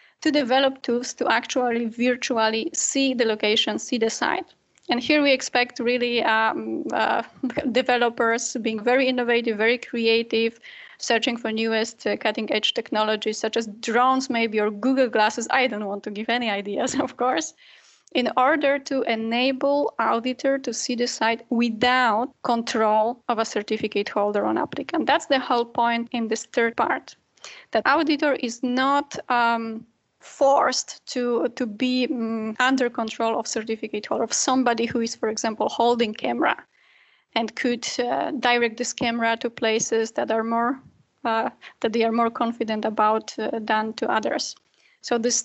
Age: 20-39